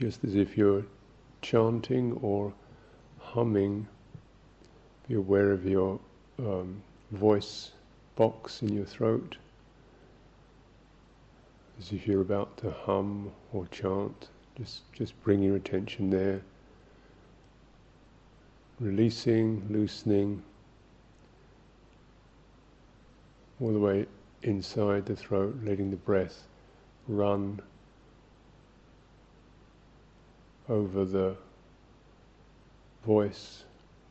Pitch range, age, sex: 95-110 Hz, 50-69, male